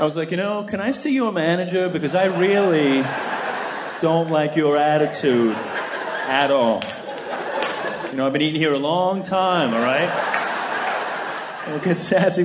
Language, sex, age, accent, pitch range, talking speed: English, male, 30-49, American, 155-215 Hz, 165 wpm